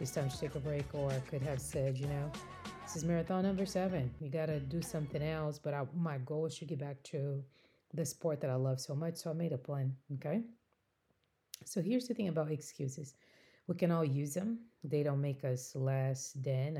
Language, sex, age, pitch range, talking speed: English, female, 30-49, 140-165 Hz, 225 wpm